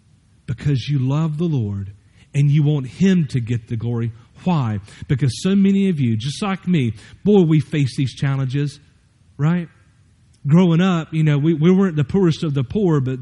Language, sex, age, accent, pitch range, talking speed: English, male, 40-59, American, 135-185 Hz, 185 wpm